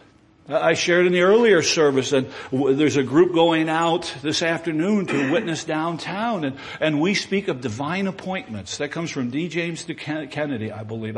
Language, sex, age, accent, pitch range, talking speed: English, male, 60-79, American, 150-225 Hz, 185 wpm